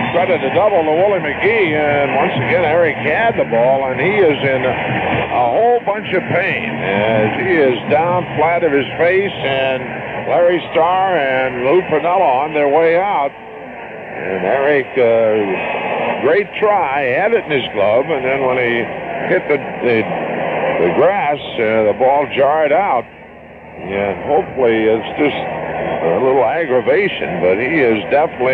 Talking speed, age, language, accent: 160 wpm, 60-79, English, American